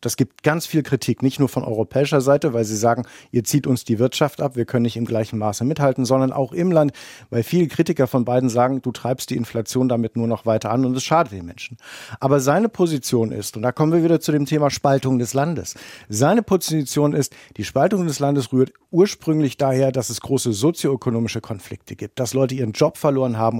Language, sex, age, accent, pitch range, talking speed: German, male, 50-69, German, 120-150 Hz, 220 wpm